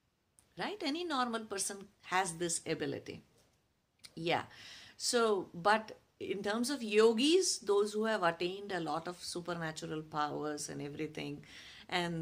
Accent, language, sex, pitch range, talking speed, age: Indian, English, female, 165-230 Hz, 130 wpm, 50-69